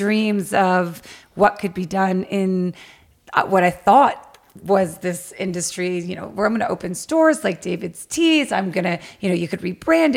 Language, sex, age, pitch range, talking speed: English, female, 30-49, 180-205 Hz, 190 wpm